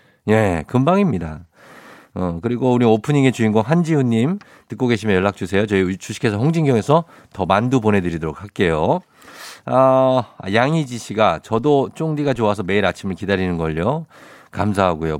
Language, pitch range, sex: Korean, 105-150 Hz, male